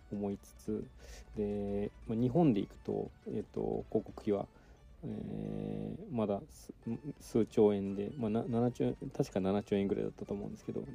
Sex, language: male, Japanese